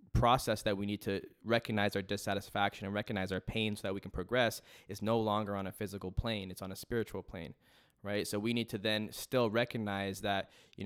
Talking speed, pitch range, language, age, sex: 215 wpm, 95-110 Hz, English, 10-29, male